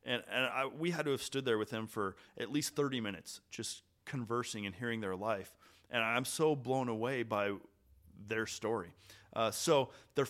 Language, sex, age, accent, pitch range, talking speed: English, male, 30-49, American, 105-130 Hz, 190 wpm